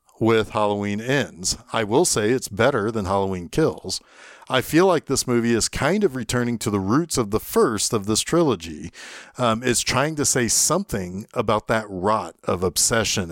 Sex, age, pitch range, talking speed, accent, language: male, 40-59, 105-135 Hz, 180 wpm, American, English